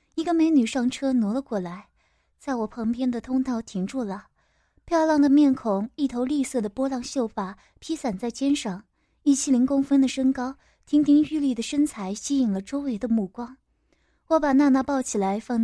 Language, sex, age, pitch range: Chinese, female, 20-39, 220-275 Hz